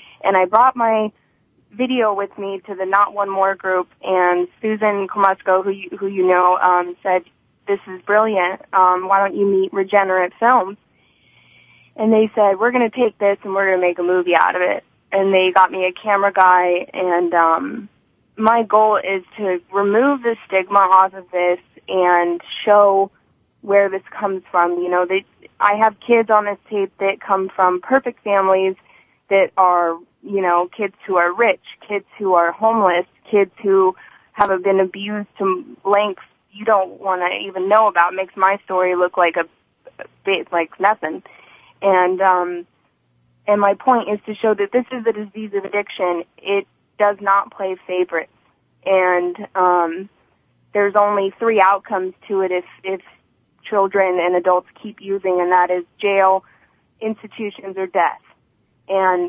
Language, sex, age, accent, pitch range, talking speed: English, female, 20-39, American, 180-205 Hz, 170 wpm